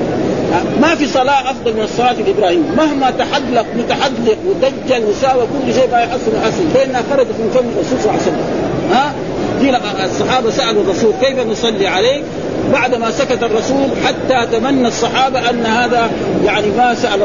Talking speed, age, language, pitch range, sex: 145 wpm, 50-69, Arabic, 215-260 Hz, male